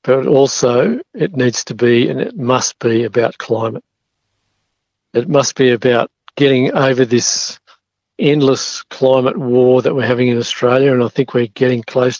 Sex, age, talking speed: male, 50-69, 160 wpm